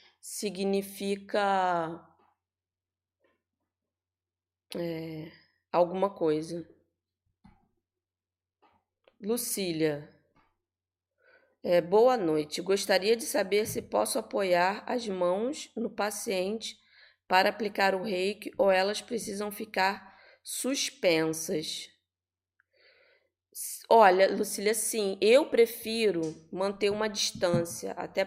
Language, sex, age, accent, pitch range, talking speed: Portuguese, female, 20-39, Brazilian, 165-220 Hz, 75 wpm